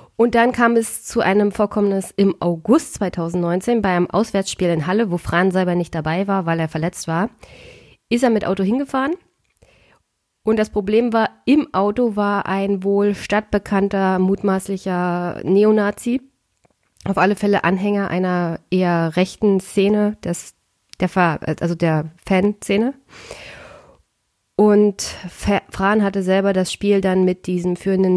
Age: 20-39